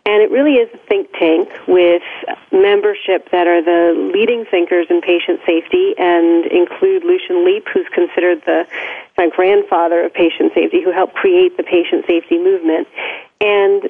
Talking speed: 160 wpm